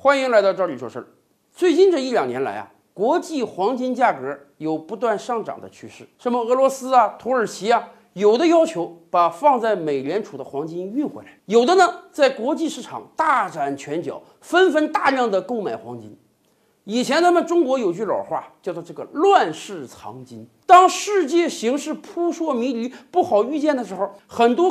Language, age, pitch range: Chinese, 50-69, 200-330 Hz